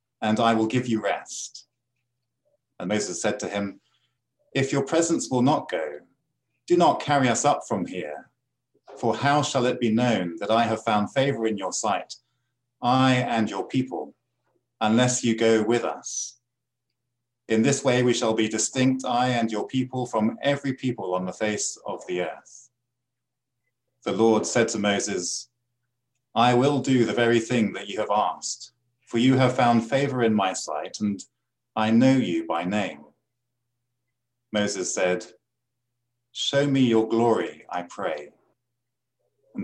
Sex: male